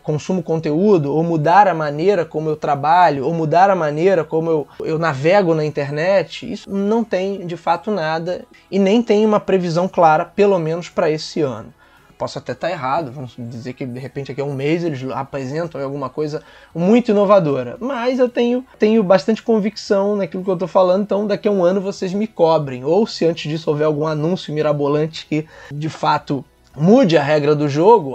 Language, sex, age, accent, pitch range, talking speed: Portuguese, male, 20-39, Brazilian, 155-195 Hz, 190 wpm